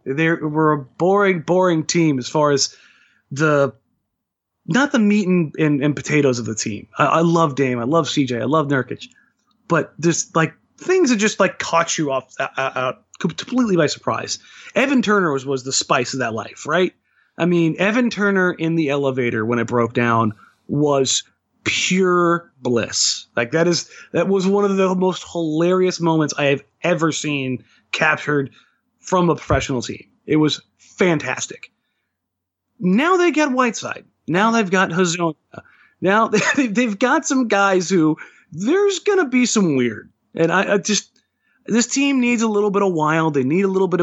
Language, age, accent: English, 30-49, American